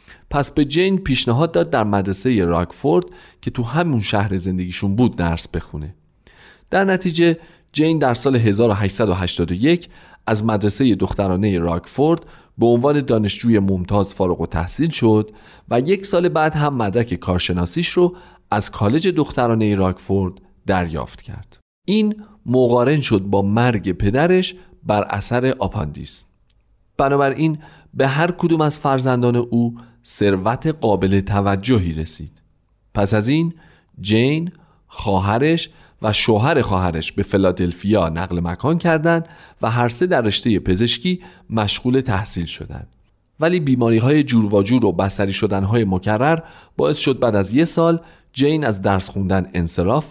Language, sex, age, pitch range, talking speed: Persian, male, 40-59, 95-150 Hz, 125 wpm